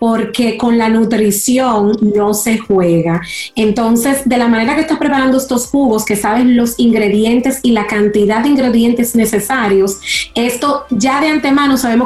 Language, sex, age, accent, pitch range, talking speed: Spanish, female, 30-49, American, 215-270 Hz, 155 wpm